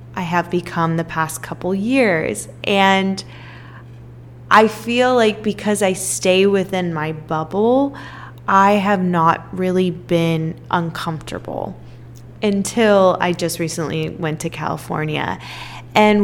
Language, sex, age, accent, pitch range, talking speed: English, female, 10-29, American, 160-195 Hz, 115 wpm